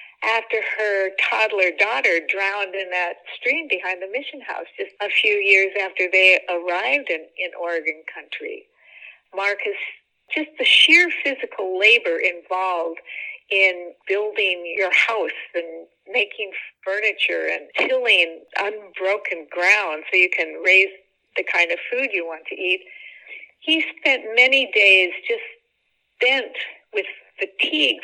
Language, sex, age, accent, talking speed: English, female, 50-69, American, 130 wpm